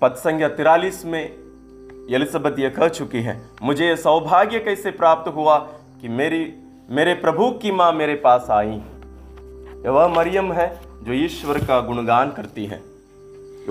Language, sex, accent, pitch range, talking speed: English, male, Indian, 110-165 Hz, 150 wpm